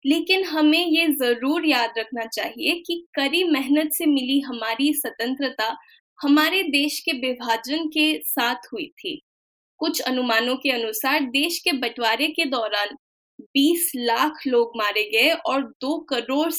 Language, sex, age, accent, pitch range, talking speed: Hindi, female, 10-29, native, 240-315 Hz, 140 wpm